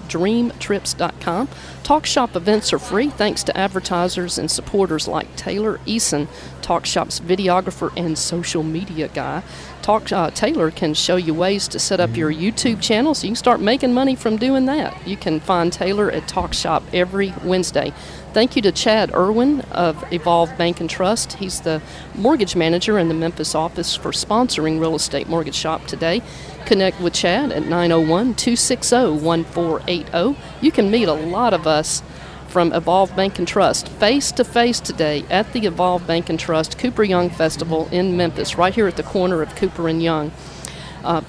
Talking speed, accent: 170 wpm, American